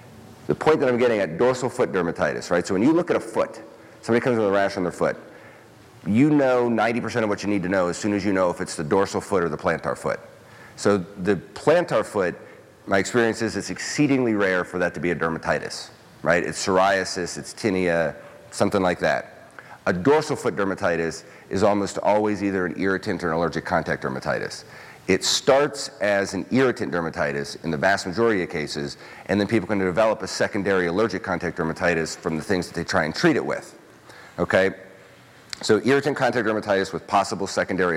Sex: male